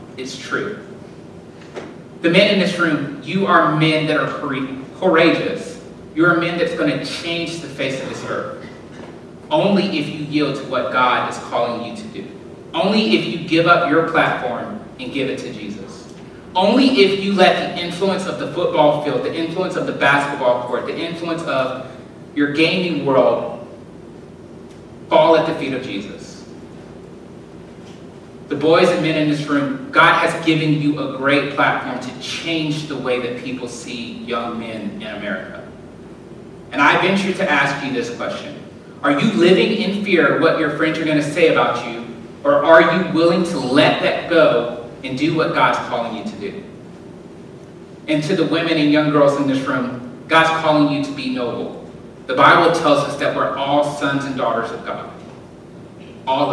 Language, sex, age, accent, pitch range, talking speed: English, male, 30-49, American, 140-170 Hz, 180 wpm